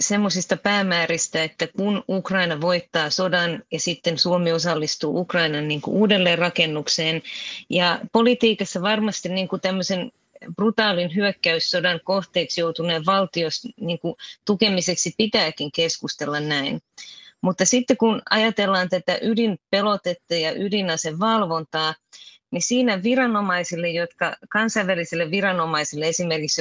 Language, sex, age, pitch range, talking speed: Finnish, female, 30-49, 165-200 Hz, 105 wpm